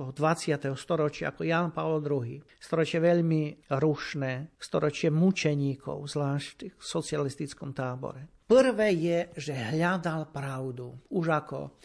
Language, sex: Slovak, male